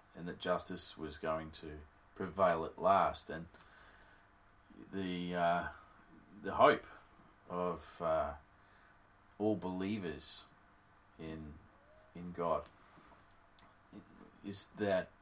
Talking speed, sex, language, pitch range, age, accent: 90 wpm, male, English, 85-100 Hz, 30-49, Australian